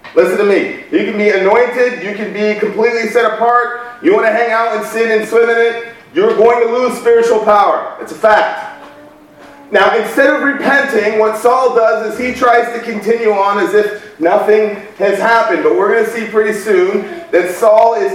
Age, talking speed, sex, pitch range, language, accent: 30-49, 200 wpm, male, 205-245 Hz, English, American